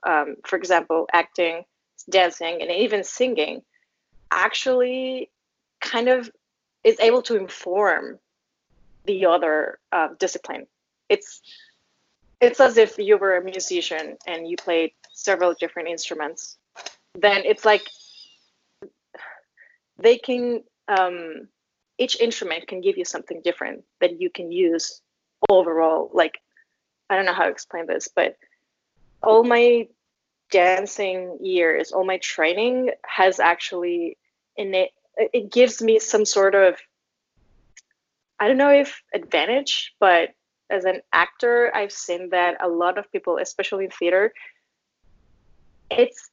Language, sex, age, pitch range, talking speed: English, female, 20-39, 180-265 Hz, 125 wpm